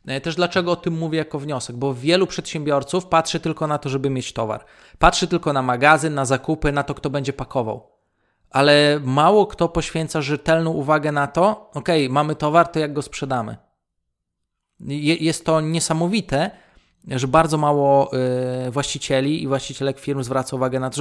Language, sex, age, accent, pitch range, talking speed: Polish, male, 20-39, native, 135-160 Hz, 165 wpm